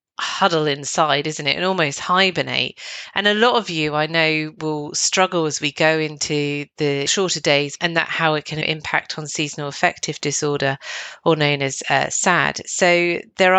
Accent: British